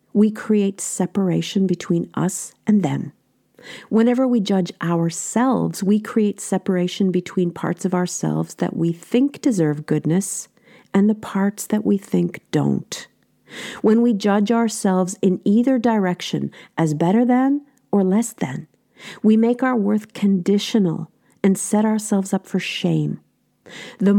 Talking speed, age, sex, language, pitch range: 135 wpm, 50-69, female, English, 170-215 Hz